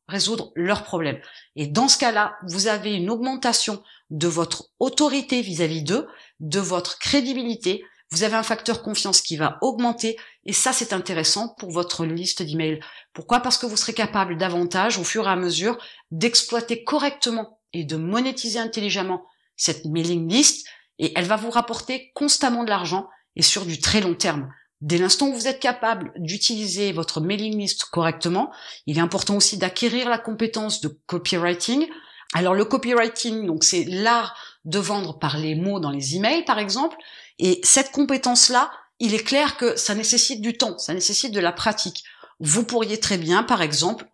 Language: French